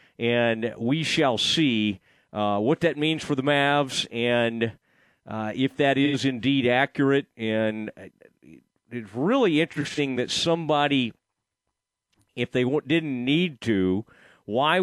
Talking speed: 120 wpm